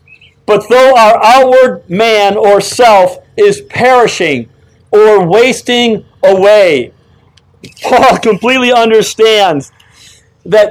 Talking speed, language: 90 wpm, English